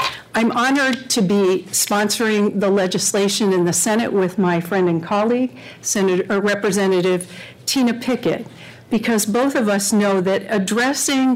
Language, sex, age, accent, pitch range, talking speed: English, female, 50-69, American, 180-220 Hz, 145 wpm